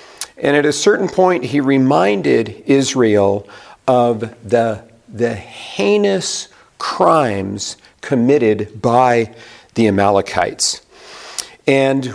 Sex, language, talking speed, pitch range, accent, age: male, English, 90 wpm, 120-170 Hz, American, 50-69